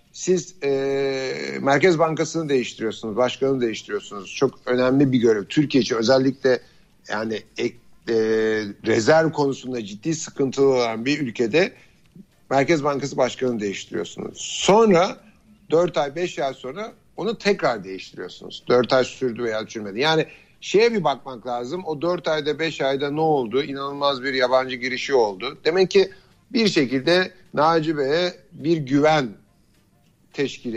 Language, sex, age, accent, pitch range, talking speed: Turkish, male, 60-79, native, 130-180 Hz, 135 wpm